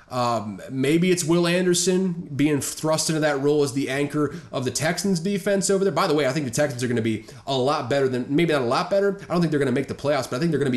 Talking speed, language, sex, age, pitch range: 295 wpm, English, male, 30-49, 130-170 Hz